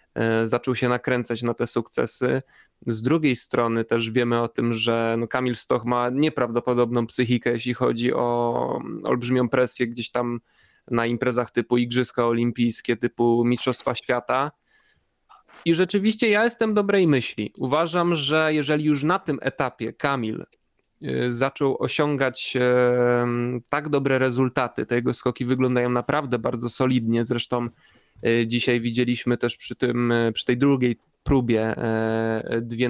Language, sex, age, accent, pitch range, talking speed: Polish, male, 20-39, native, 120-130 Hz, 130 wpm